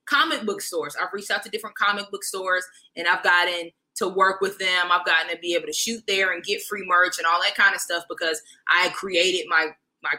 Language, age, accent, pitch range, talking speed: English, 20-39, American, 190-250 Hz, 240 wpm